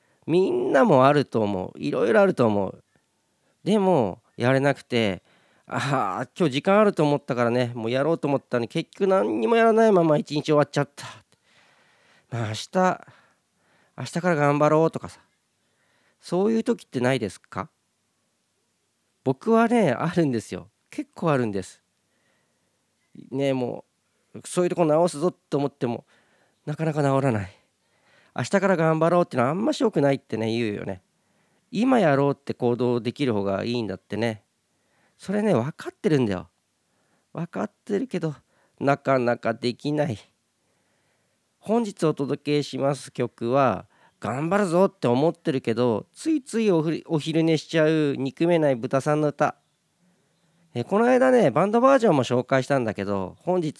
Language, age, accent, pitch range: Japanese, 40-59, native, 120-175 Hz